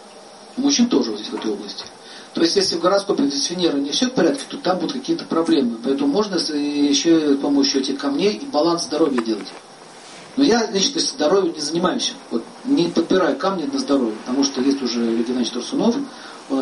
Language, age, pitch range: Russian, 40-59, 135-195 Hz